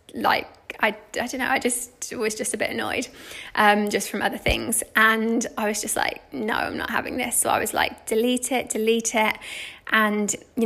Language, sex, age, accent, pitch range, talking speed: English, female, 20-39, British, 215-245 Hz, 210 wpm